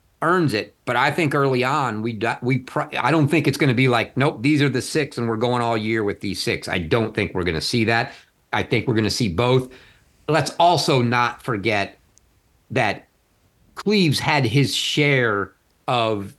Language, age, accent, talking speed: English, 50-69, American, 205 wpm